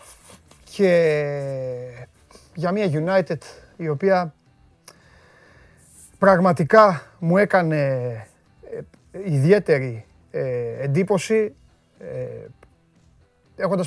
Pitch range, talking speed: 135-170 Hz, 50 wpm